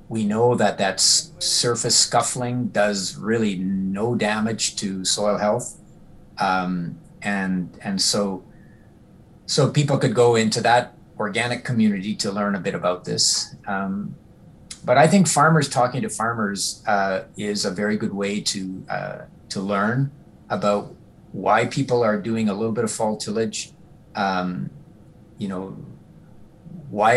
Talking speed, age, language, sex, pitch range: 140 wpm, 50-69, English, male, 100-125 Hz